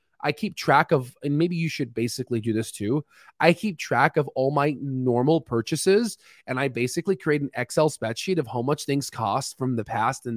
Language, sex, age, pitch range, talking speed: English, male, 20-39, 125-175 Hz, 210 wpm